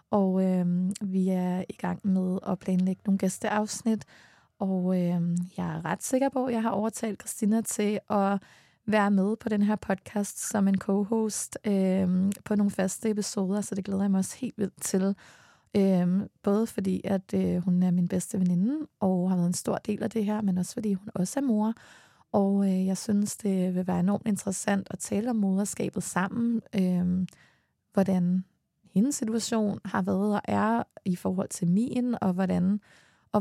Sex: female